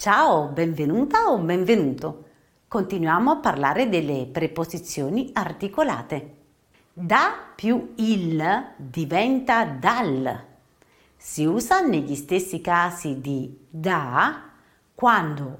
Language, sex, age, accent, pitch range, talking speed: English, female, 50-69, Italian, 150-235 Hz, 90 wpm